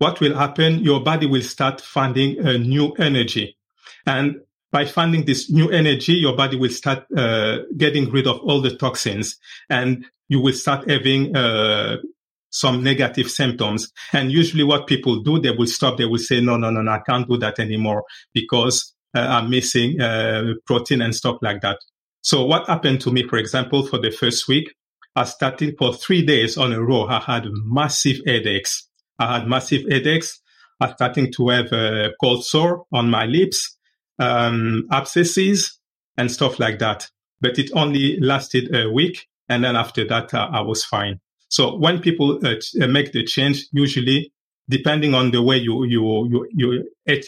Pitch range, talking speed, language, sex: 115-140 Hz, 180 wpm, English, male